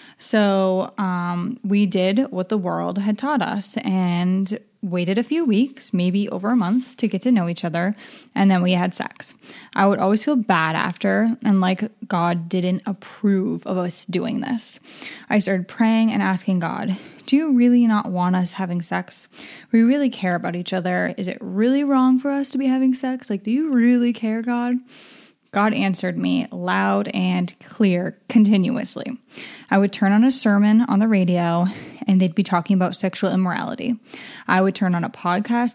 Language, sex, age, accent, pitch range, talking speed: English, female, 10-29, American, 190-245 Hz, 185 wpm